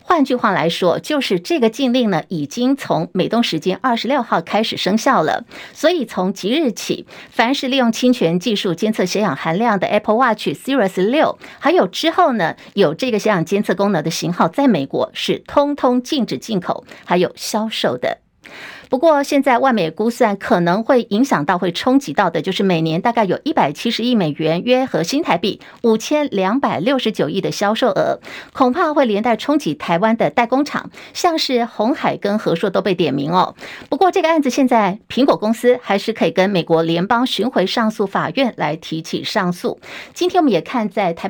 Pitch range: 195-260 Hz